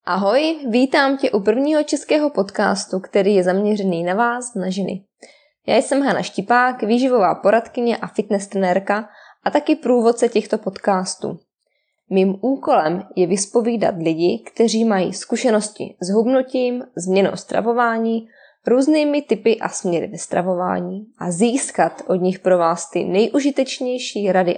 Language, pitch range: Czech, 190-245 Hz